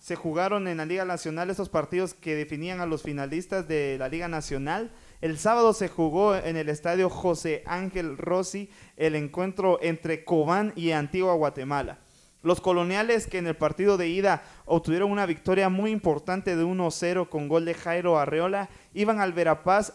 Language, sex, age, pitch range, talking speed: Spanish, male, 30-49, 155-190 Hz, 170 wpm